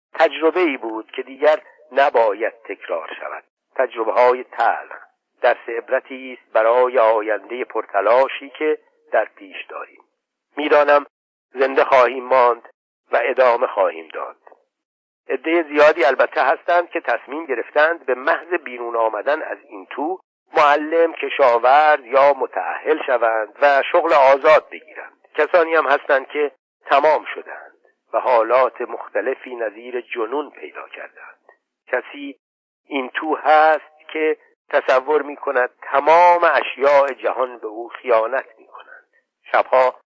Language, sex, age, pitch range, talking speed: Persian, male, 50-69, 130-170 Hz, 120 wpm